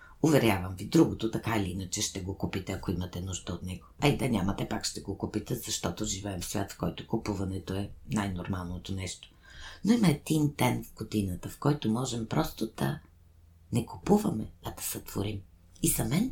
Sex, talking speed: female, 185 wpm